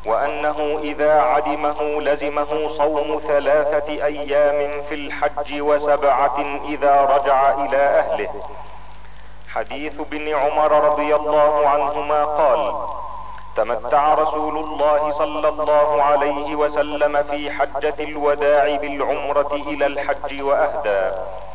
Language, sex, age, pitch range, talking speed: Arabic, male, 40-59, 145-155 Hz, 95 wpm